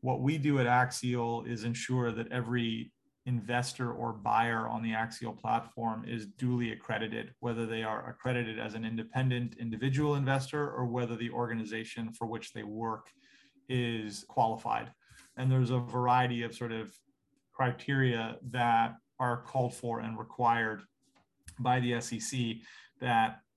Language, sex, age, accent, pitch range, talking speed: English, male, 30-49, American, 115-125 Hz, 145 wpm